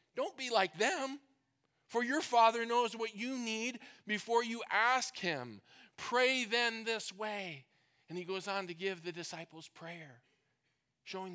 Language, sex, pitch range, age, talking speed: English, male, 140-175 Hz, 40-59, 155 wpm